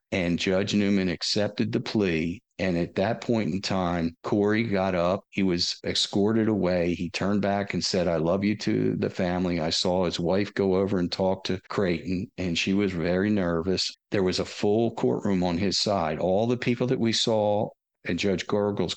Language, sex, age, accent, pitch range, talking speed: English, male, 50-69, American, 90-115 Hz, 195 wpm